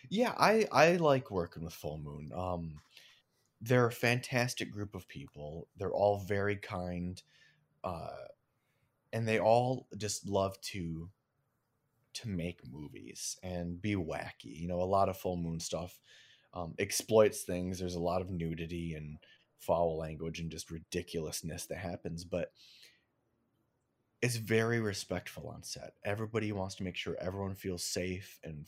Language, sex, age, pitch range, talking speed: English, male, 30-49, 85-110 Hz, 150 wpm